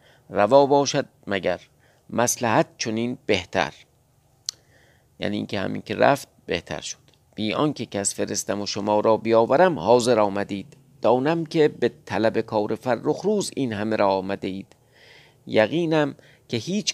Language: Persian